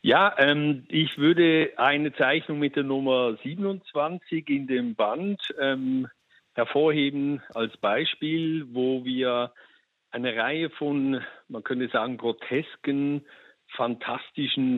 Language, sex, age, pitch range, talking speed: German, male, 50-69, 120-150 Hz, 110 wpm